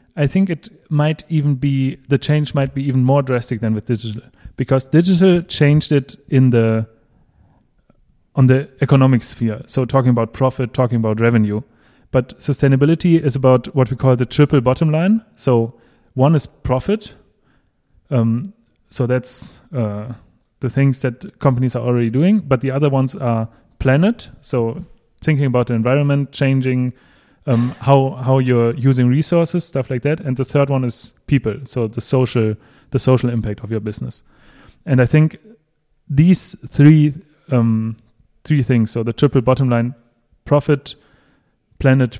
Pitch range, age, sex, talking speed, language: 120-145 Hz, 30-49, male, 155 wpm, English